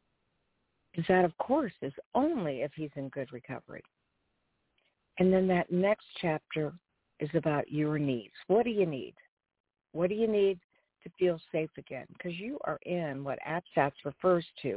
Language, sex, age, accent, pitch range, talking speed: English, female, 50-69, American, 155-225 Hz, 165 wpm